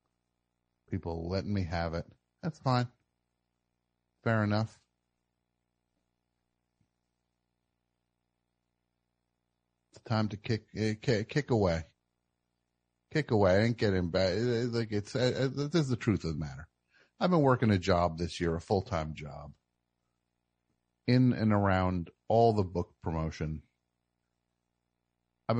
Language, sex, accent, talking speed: English, male, American, 110 wpm